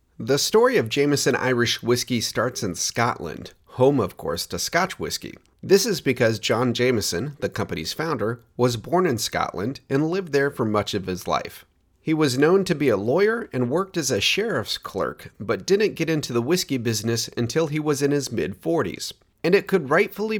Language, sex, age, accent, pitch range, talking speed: English, male, 30-49, American, 105-145 Hz, 190 wpm